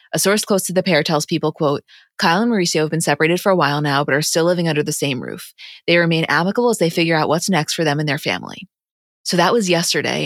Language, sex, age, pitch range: English, female, 20-39, 150-185 Hz